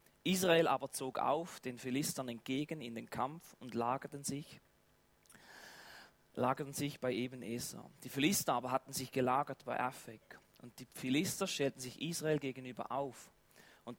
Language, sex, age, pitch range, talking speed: German, male, 30-49, 135-180 Hz, 140 wpm